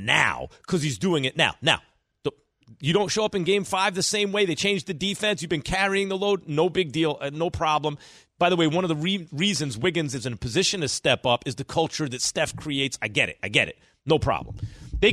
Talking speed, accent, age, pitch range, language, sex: 250 wpm, American, 40-59, 115-185 Hz, English, male